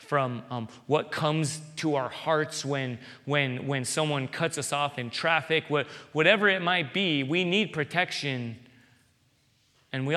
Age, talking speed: 30-49, 155 wpm